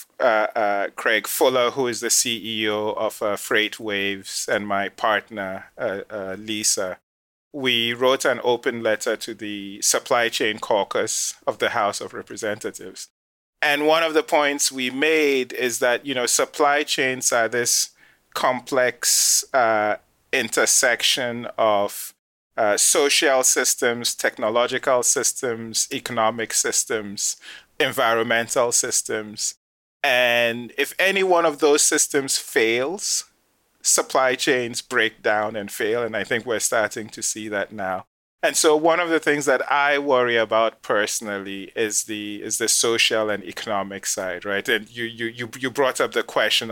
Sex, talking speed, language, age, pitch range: male, 145 wpm, English, 30-49, 110-140 Hz